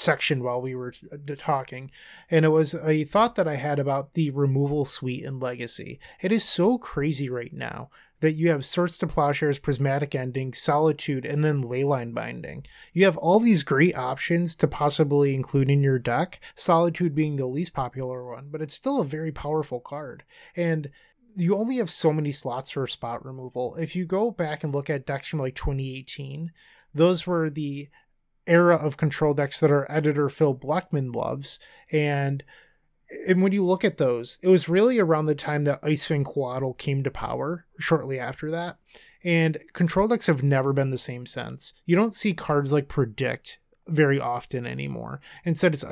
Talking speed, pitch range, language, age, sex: 180 wpm, 135-165 Hz, English, 20-39, male